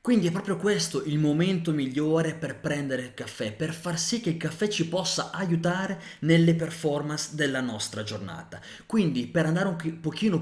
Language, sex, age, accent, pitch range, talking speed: Italian, male, 20-39, native, 125-185 Hz, 175 wpm